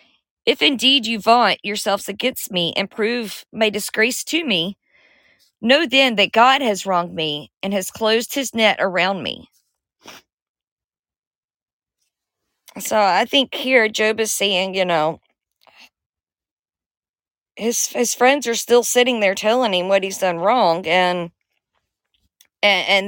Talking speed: 135 wpm